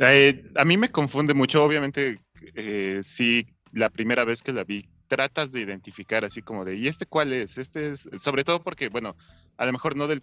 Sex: male